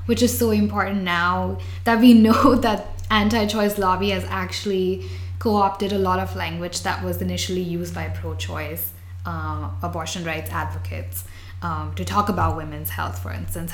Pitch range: 85-95 Hz